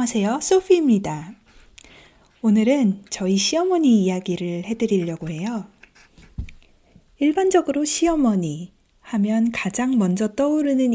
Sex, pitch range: female, 185-250 Hz